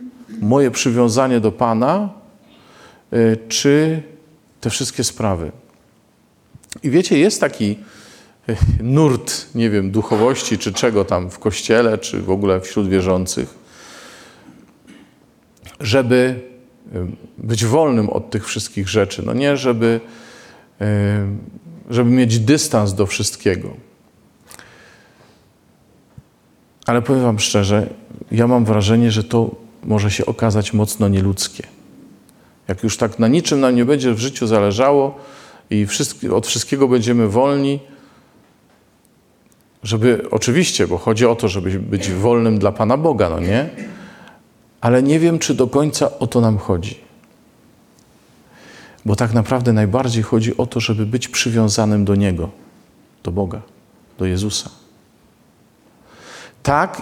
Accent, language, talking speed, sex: native, Polish, 120 wpm, male